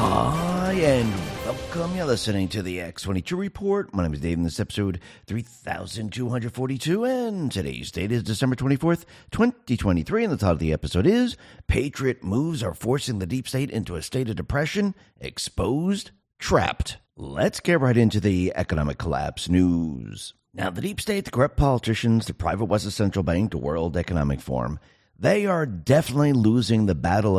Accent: American